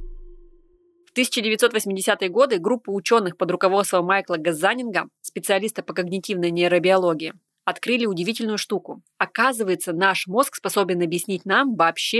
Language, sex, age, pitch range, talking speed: Russian, female, 20-39, 180-230 Hz, 115 wpm